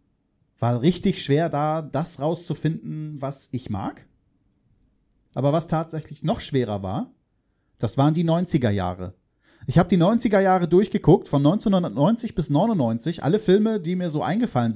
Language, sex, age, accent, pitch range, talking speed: German, male, 40-59, German, 125-175 Hz, 145 wpm